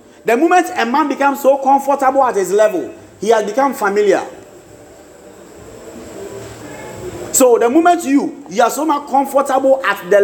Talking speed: 145 wpm